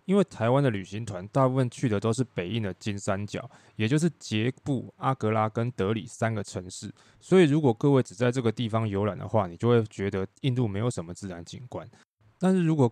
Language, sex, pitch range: Chinese, male, 105-130 Hz